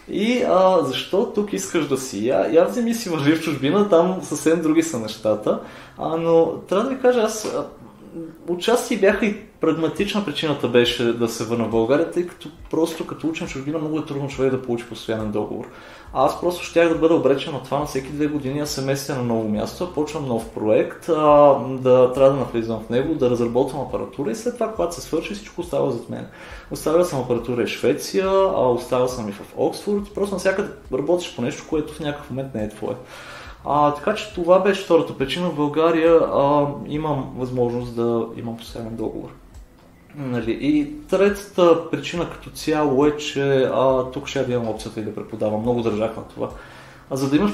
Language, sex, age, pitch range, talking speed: Bulgarian, male, 20-39, 125-170 Hz, 190 wpm